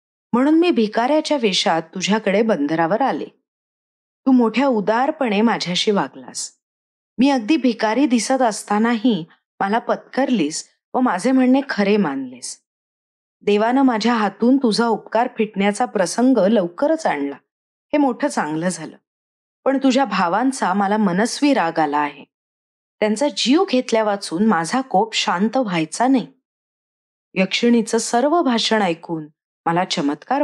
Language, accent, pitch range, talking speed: Marathi, native, 195-260 Hz, 115 wpm